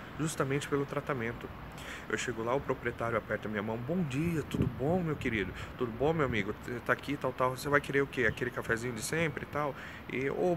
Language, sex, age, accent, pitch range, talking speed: Portuguese, male, 30-49, Brazilian, 115-145 Hz, 210 wpm